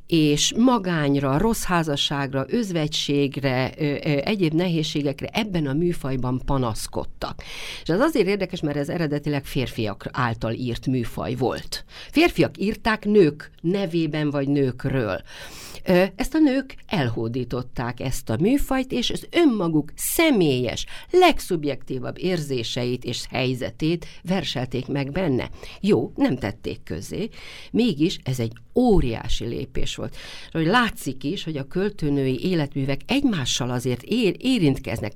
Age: 50-69